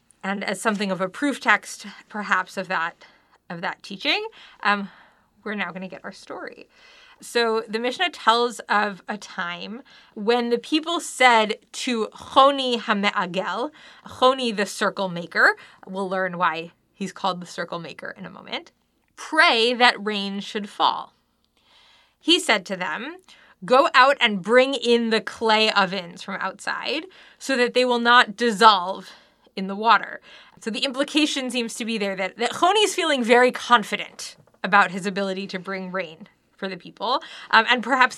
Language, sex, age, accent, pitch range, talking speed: English, female, 20-39, American, 195-265 Hz, 160 wpm